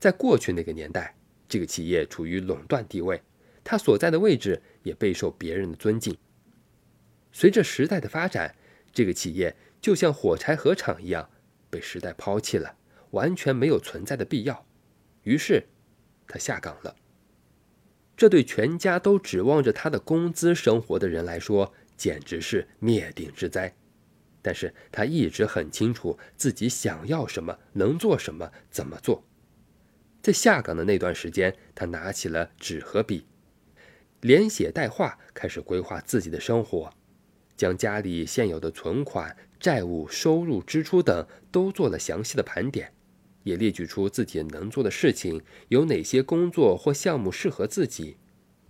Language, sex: Chinese, male